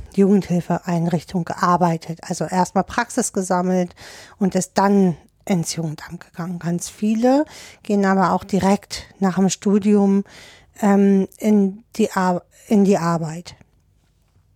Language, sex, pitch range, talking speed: German, female, 185-210 Hz, 110 wpm